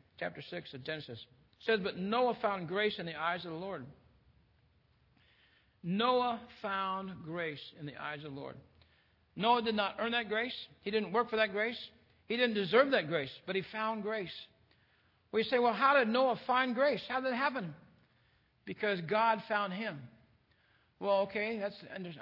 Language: English